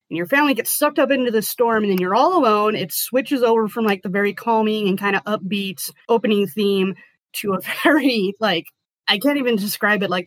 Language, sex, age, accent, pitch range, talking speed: English, female, 20-39, American, 180-215 Hz, 220 wpm